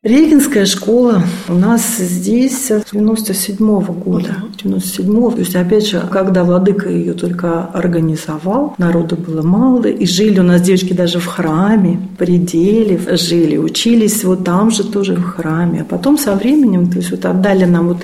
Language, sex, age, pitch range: Russian, female, 40-59, 180-220 Hz